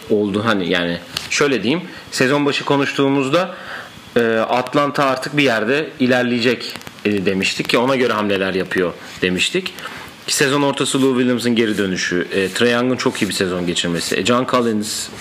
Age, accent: 40-59, native